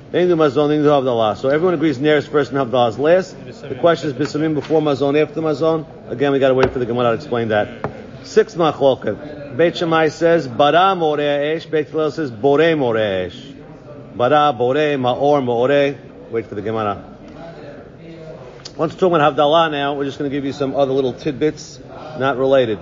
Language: English